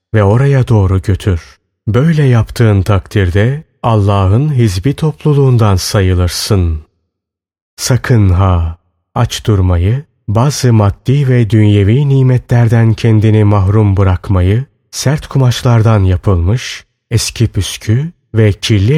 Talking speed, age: 95 wpm, 30-49